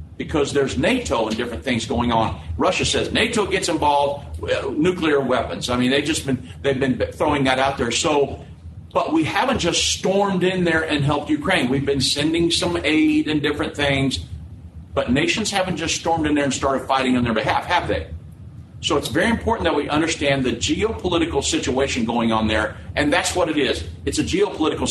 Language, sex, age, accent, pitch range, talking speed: English, male, 50-69, American, 120-155 Hz, 200 wpm